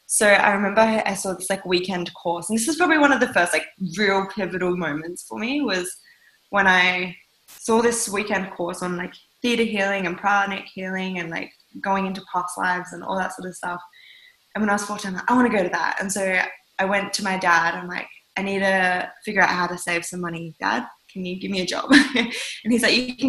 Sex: female